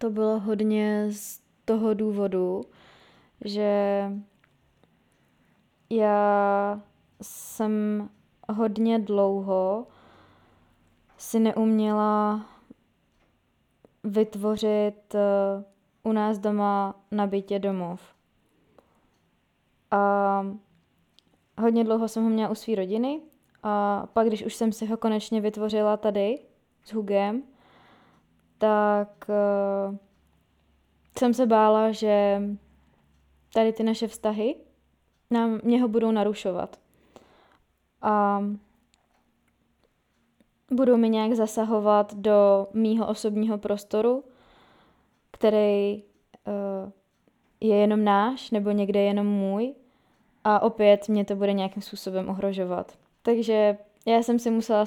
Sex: female